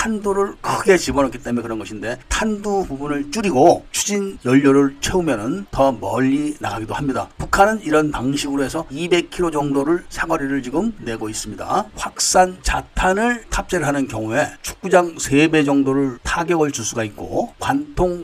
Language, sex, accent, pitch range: Korean, male, native, 130-175 Hz